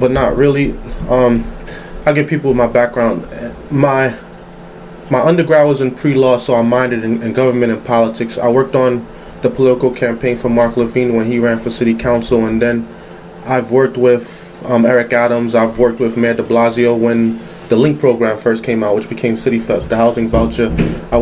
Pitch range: 115-135 Hz